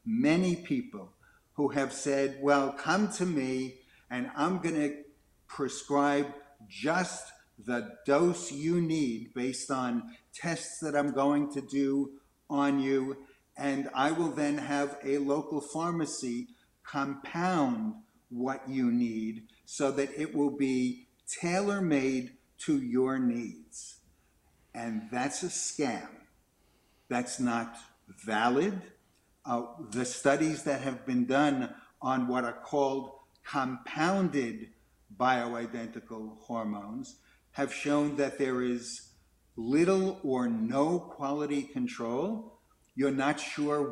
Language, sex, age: English, male, 50-69